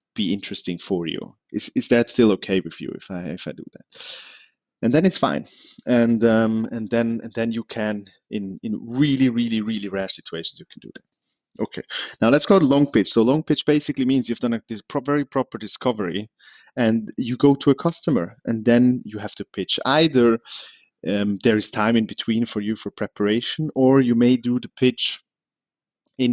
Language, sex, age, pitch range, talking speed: English, male, 30-49, 100-125 Hz, 205 wpm